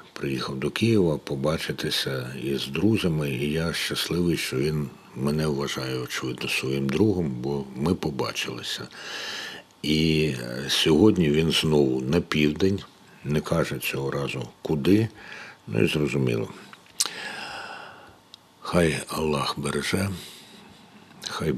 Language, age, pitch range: Ukrainian, 60-79, 70-90 Hz